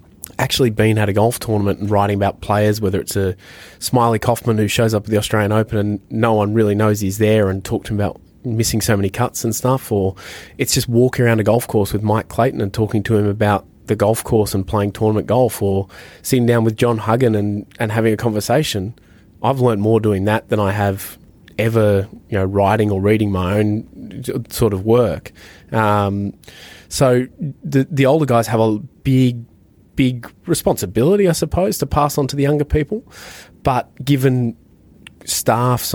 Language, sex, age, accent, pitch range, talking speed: English, male, 20-39, Australian, 100-120 Hz, 195 wpm